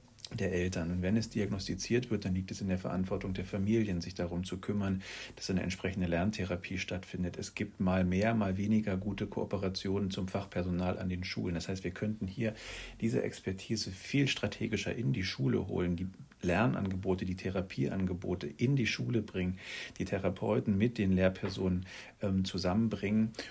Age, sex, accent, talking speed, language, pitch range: 40-59, male, German, 165 wpm, German, 95-105 Hz